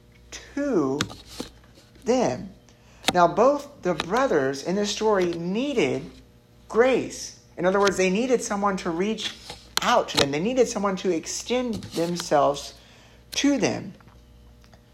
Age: 60-79